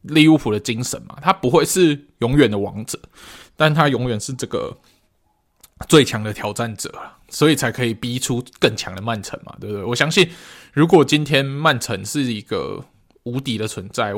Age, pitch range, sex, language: 20-39, 105-135 Hz, male, Chinese